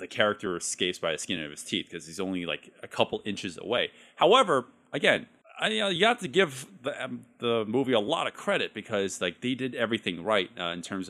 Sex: male